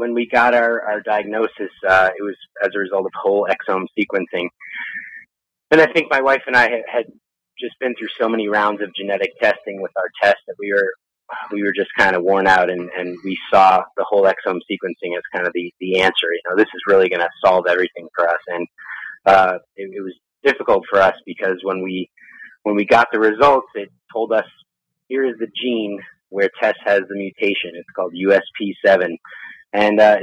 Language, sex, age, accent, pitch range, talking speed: English, male, 30-49, American, 95-125 Hz, 205 wpm